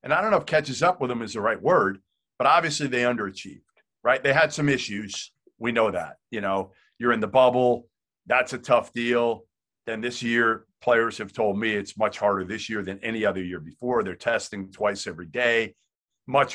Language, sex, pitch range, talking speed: English, male, 100-130 Hz, 210 wpm